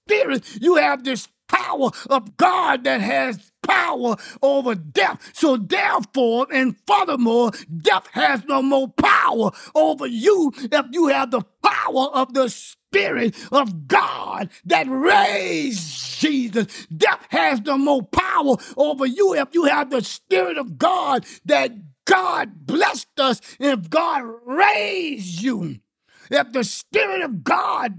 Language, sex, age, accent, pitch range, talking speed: English, male, 50-69, American, 205-270 Hz, 135 wpm